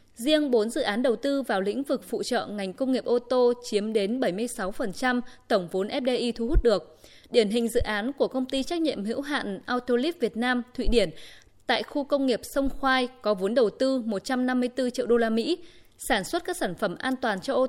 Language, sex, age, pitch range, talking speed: Vietnamese, female, 20-39, 220-270 Hz, 225 wpm